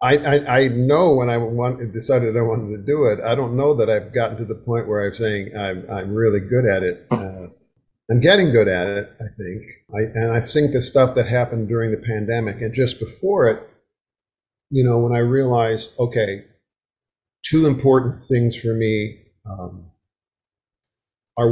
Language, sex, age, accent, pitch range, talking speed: English, male, 50-69, American, 110-125 Hz, 185 wpm